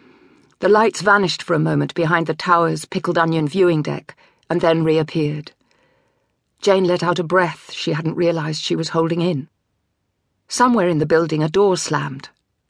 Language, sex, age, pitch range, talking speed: English, female, 50-69, 155-205 Hz, 165 wpm